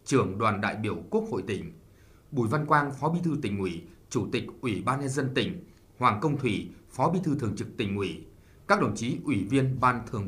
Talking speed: 230 wpm